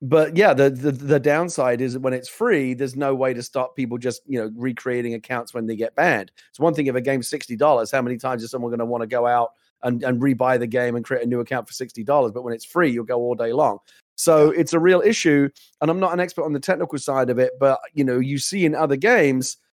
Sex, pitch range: male, 120-150 Hz